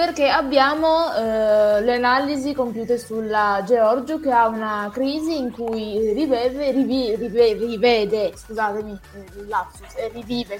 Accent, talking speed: native, 120 wpm